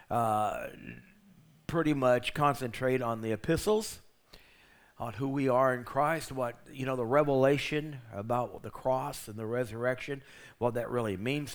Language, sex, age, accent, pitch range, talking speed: English, male, 60-79, American, 125-160 Hz, 145 wpm